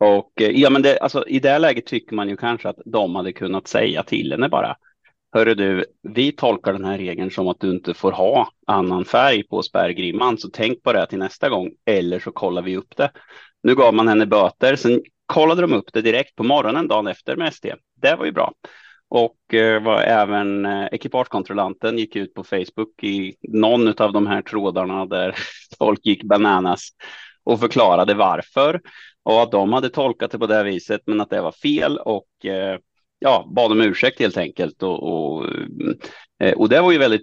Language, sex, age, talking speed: Swedish, male, 30-49, 200 wpm